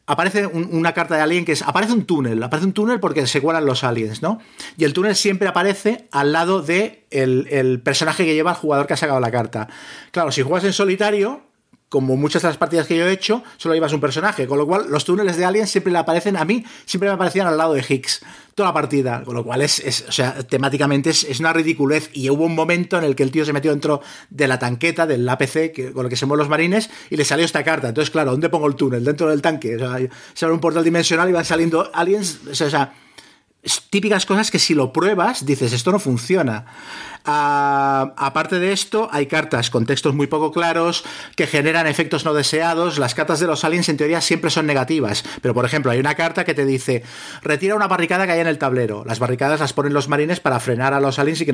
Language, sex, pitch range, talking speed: Spanish, male, 140-175 Hz, 245 wpm